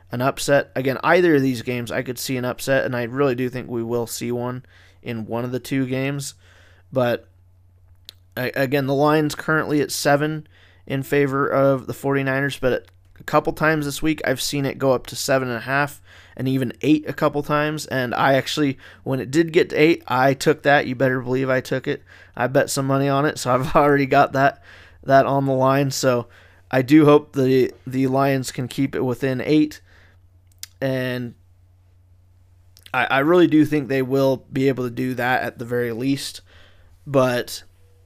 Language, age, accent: English, 20-39, American